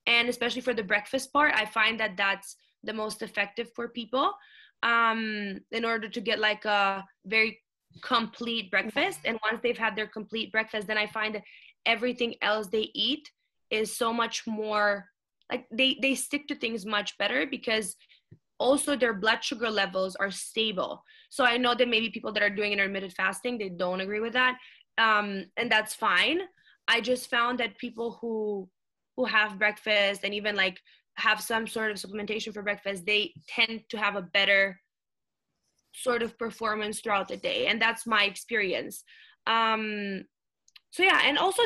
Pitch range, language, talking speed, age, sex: 215-250 Hz, English, 175 wpm, 20-39, female